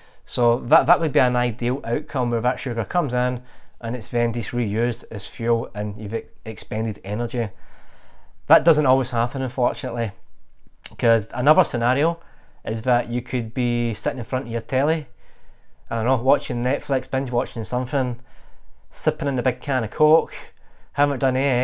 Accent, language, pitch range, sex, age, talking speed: British, English, 115-140 Hz, male, 20-39, 165 wpm